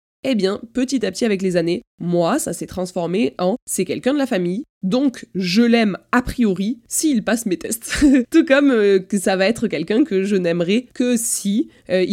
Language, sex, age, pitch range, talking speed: French, female, 20-39, 180-230 Hz, 210 wpm